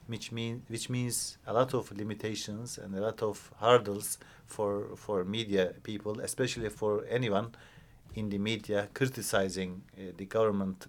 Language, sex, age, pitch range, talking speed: English, male, 50-69, 100-120 Hz, 145 wpm